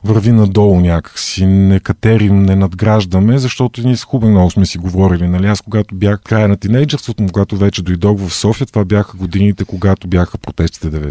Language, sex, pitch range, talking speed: Bulgarian, male, 95-115 Hz, 180 wpm